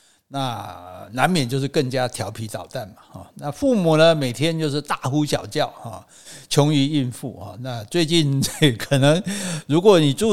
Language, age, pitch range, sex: Chinese, 60-79, 125-160 Hz, male